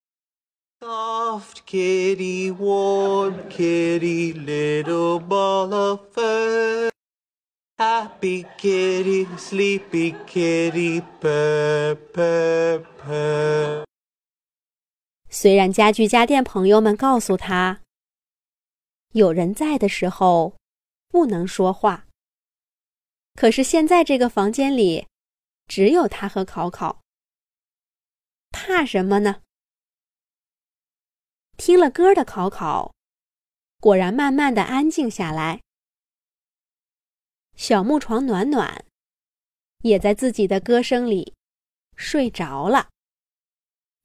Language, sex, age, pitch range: Chinese, male, 30-49, 180-270 Hz